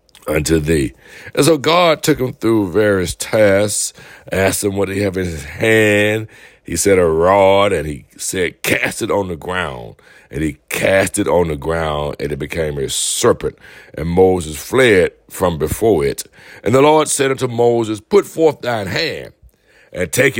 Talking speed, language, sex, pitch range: 175 wpm, English, male, 85-130 Hz